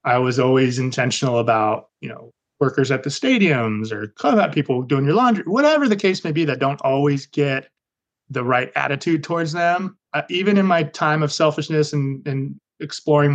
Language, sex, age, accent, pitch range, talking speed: English, male, 30-49, American, 130-165 Hz, 180 wpm